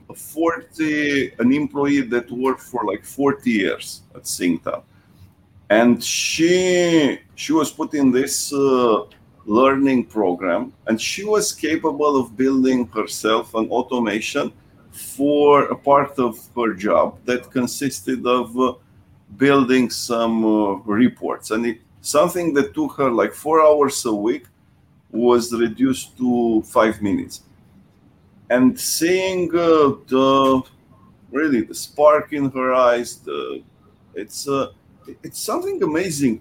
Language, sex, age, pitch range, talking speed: English, male, 50-69, 120-160 Hz, 125 wpm